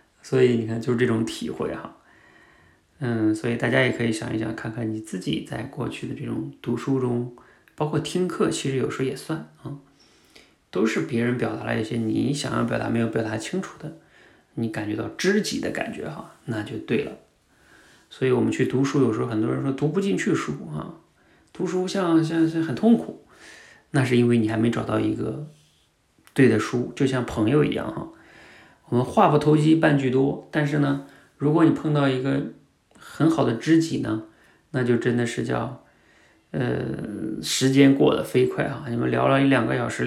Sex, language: male, Chinese